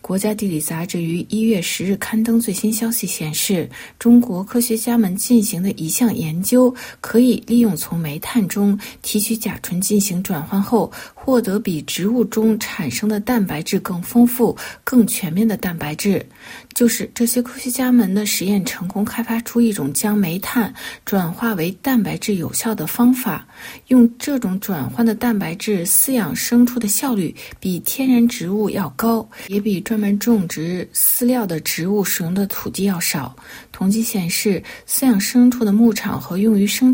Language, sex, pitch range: Chinese, female, 195-235 Hz